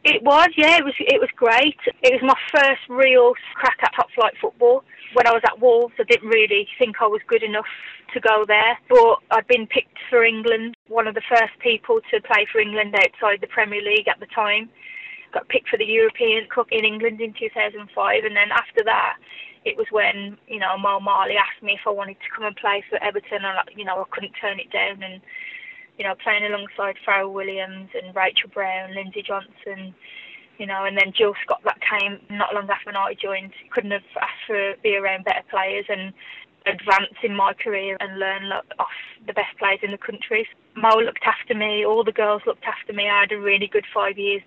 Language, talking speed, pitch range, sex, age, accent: English, 225 wpm, 200-270 Hz, female, 20-39, British